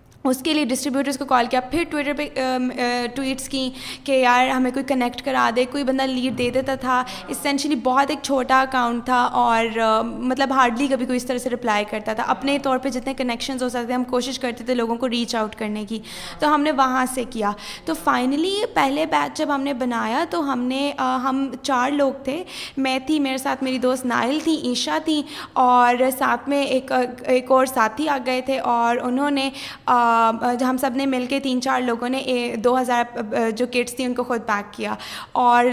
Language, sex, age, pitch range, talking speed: Urdu, female, 20-39, 245-280 Hz, 205 wpm